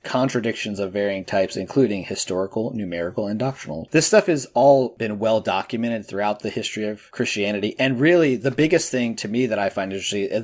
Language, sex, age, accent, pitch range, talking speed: English, male, 30-49, American, 100-125 Hz, 190 wpm